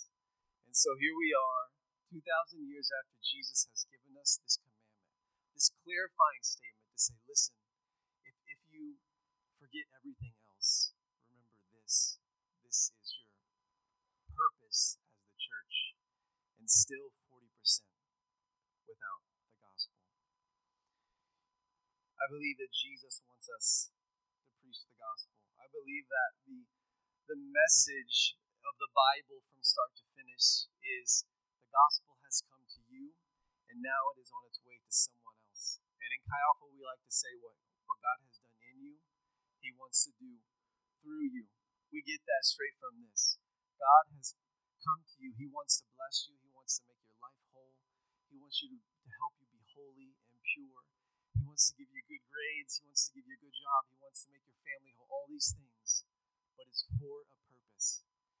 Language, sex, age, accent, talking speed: English, male, 30-49, American, 165 wpm